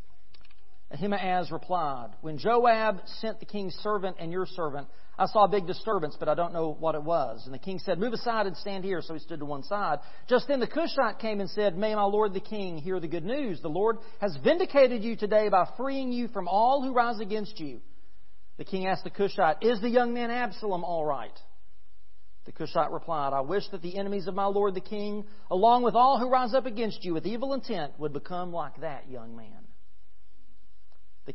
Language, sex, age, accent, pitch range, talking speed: English, male, 40-59, American, 145-210 Hz, 215 wpm